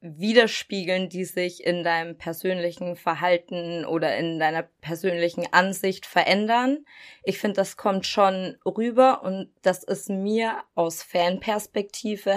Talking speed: 120 wpm